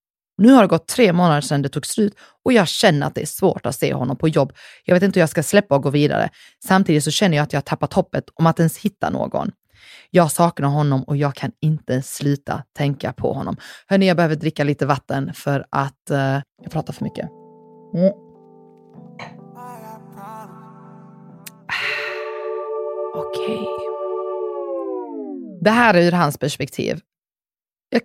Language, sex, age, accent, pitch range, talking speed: English, female, 30-49, Swedish, 140-185 Hz, 170 wpm